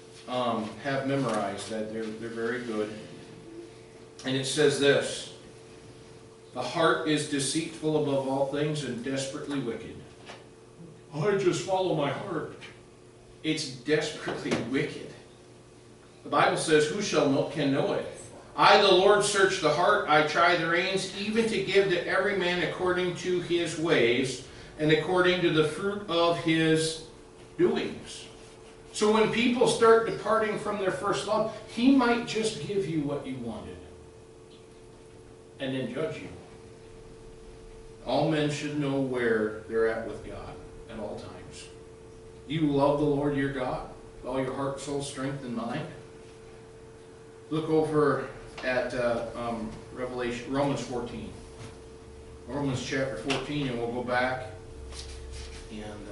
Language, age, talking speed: English, 40-59, 140 wpm